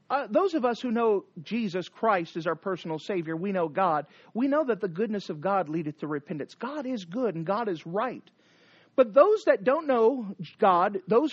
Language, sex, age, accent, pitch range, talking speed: English, male, 40-59, American, 175-230 Hz, 205 wpm